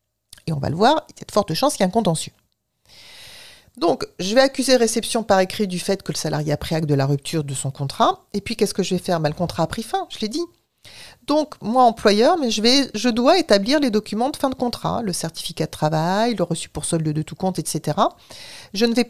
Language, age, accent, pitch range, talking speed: French, 40-59, French, 165-240 Hz, 255 wpm